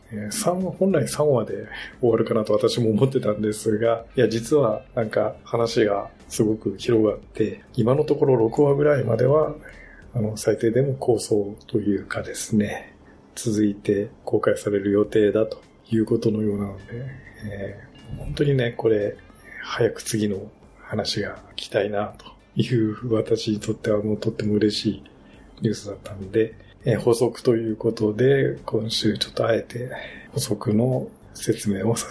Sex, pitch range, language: male, 105-130 Hz, Japanese